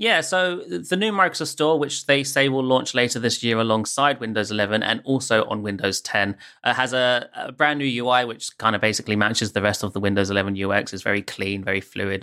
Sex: male